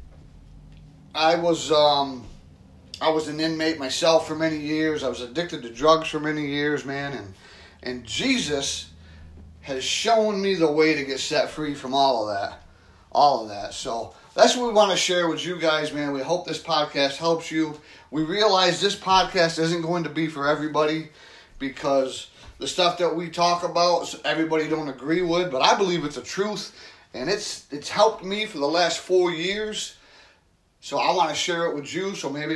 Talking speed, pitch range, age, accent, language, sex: 190 wpm, 130-170 Hz, 30-49, American, English, male